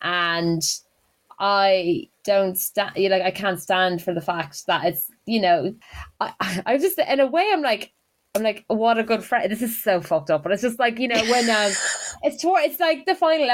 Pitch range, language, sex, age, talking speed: 180-230 Hz, English, female, 20-39, 220 wpm